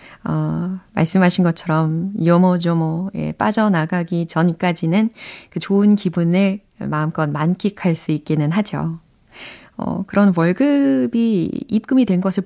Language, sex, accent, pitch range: Korean, female, native, 165-240 Hz